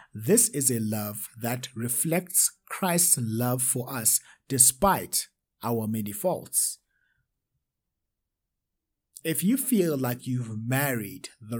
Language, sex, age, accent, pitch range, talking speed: English, male, 50-69, South African, 120-165 Hz, 110 wpm